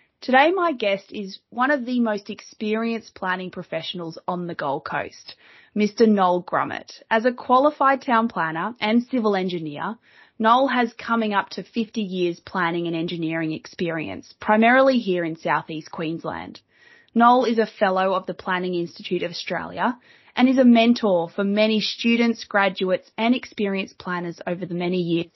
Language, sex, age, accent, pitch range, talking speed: English, female, 20-39, Australian, 180-225 Hz, 160 wpm